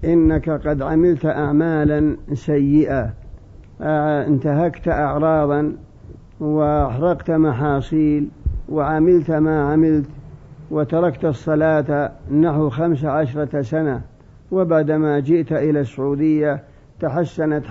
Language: Arabic